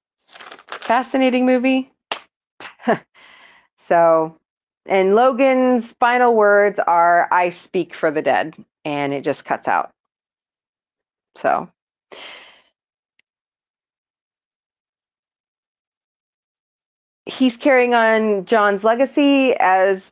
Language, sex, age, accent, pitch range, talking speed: English, female, 40-59, American, 185-255 Hz, 75 wpm